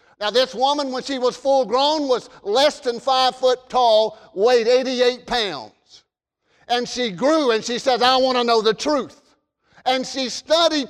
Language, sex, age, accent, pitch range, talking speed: English, male, 50-69, American, 230-295 Hz, 175 wpm